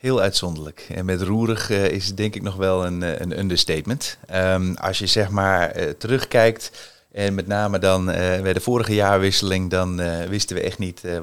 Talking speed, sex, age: 205 wpm, male, 30-49